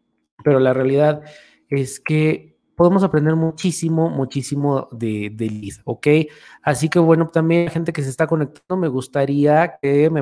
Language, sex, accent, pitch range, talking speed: Spanish, male, Mexican, 135-170 Hz, 160 wpm